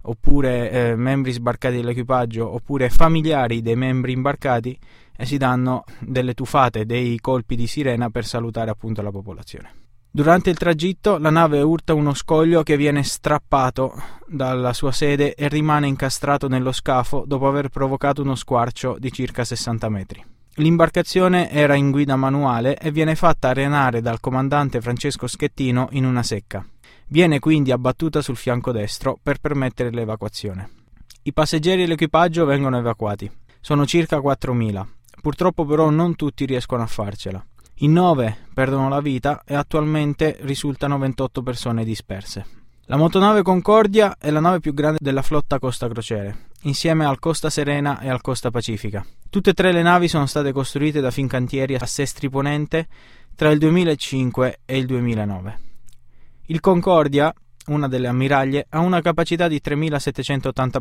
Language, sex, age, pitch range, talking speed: Italian, male, 20-39, 120-150 Hz, 150 wpm